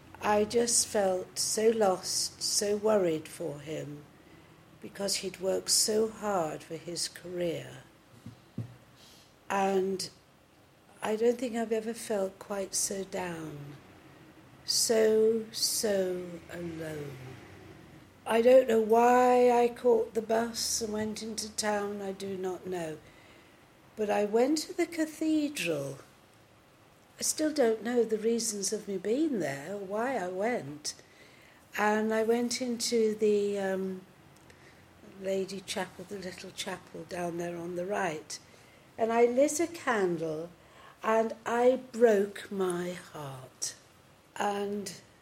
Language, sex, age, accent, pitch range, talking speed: English, female, 60-79, British, 175-230 Hz, 120 wpm